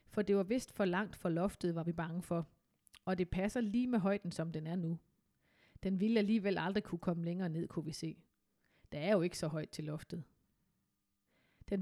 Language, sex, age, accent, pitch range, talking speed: Danish, female, 30-49, native, 170-210 Hz, 215 wpm